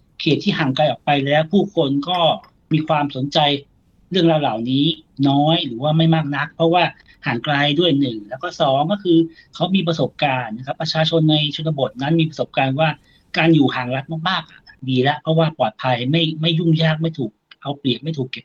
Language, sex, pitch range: Thai, male, 135-165 Hz